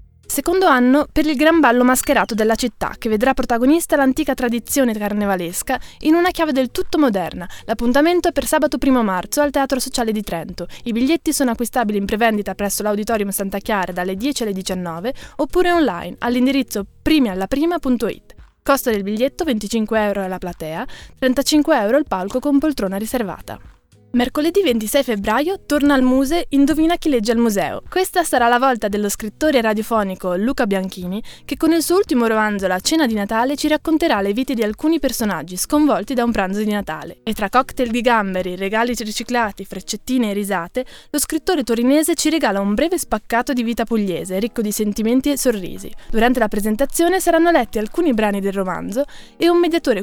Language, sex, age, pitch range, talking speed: Italian, female, 10-29, 210-285 Hz, 175 wpm